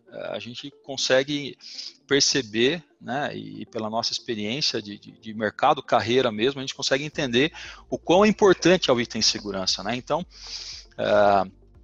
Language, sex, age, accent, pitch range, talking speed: Portuguese, male, 40-59, Brazilian, 115-140 Hz, 145 wpm